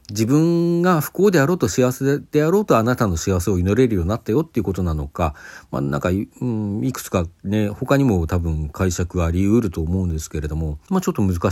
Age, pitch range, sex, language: 40-59, 85-125 Hz, male, Japanese